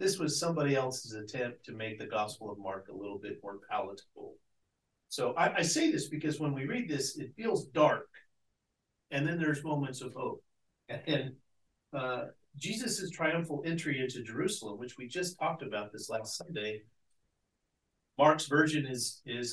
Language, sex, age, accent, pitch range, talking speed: English, male, 40-59, American, 110-150 Hz, 165 wpm